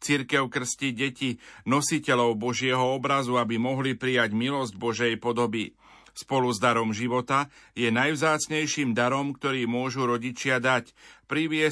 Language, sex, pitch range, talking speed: Slovak, male, 120-140 Hz, 125 wpm